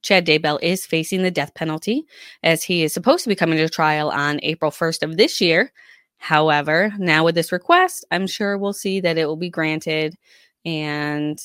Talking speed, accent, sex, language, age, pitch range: 195 wpm, American, female, English, 20-39, 155-200 Hz